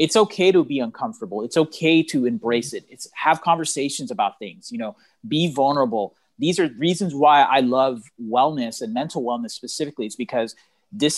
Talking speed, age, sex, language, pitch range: 175 wpm, 30-49, male, English, 135-200 Hz